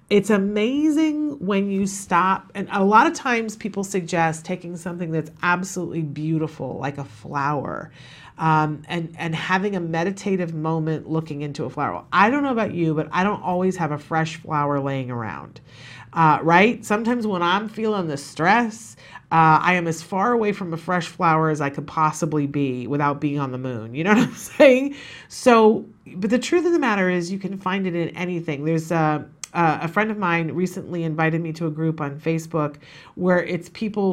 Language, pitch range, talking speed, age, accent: English, 155-200 Hz, 195 wpm, 40-59, American